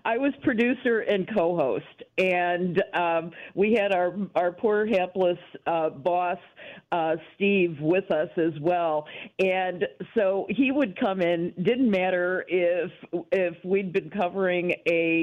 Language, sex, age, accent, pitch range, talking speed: English, female, 50-69, American, 165-190 Hz, 140 wpm